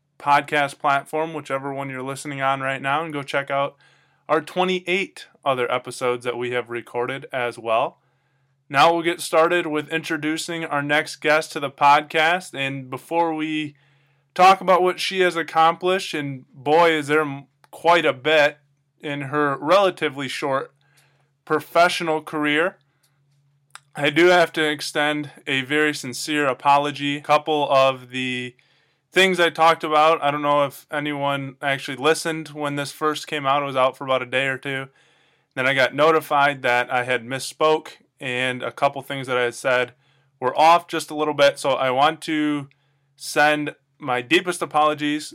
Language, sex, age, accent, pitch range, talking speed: English, male, 20-39, American, 135-155 Hz, 165 wpm